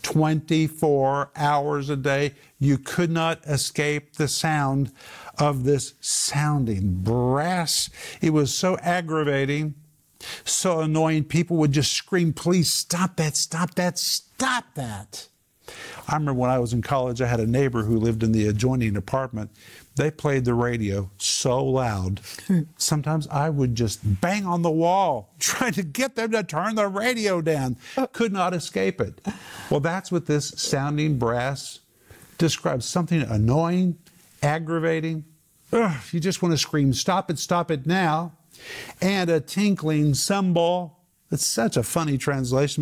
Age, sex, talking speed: 50-69, male, 145 wpm